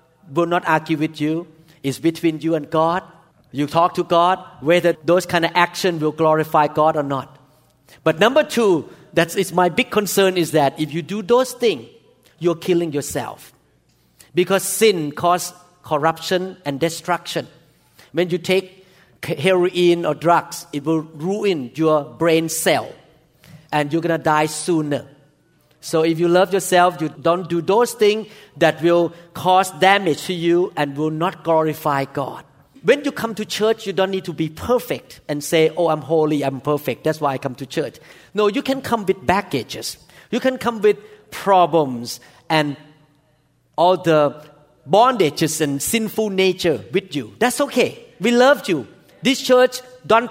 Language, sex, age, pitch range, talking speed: English, male, 50-69, 155-190 Hz, 165 wpm